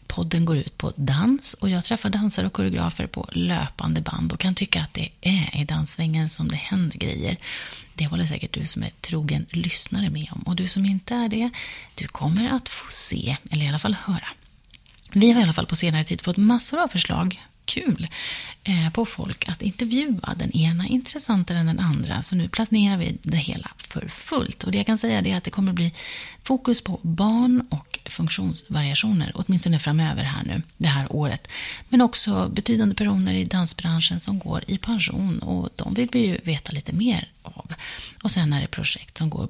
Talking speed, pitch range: 200 wpm, 150-195 Hz